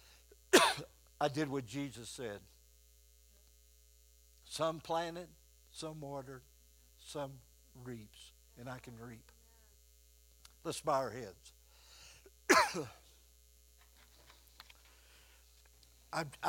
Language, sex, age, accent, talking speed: English, male, 60-79, American, 70 wpm